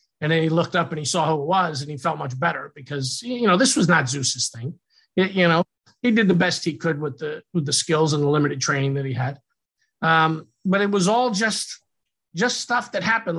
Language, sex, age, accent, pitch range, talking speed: English, male, 50-69, American, 155-180 Hz, 240 wpm